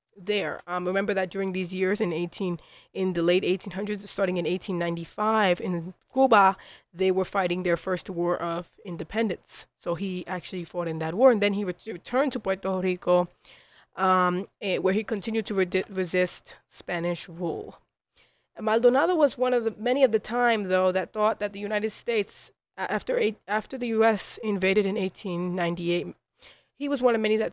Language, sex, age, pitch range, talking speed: English, female, 20-39, 185-220 Hz, 175 wpm